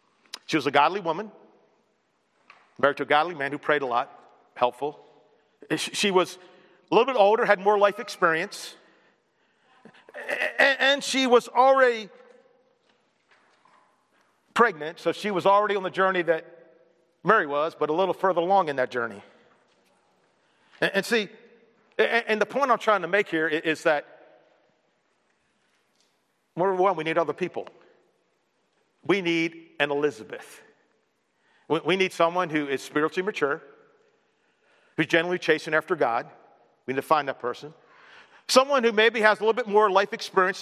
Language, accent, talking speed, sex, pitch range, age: English, American, 145 wpm, male, 165-230 Hz, 50-69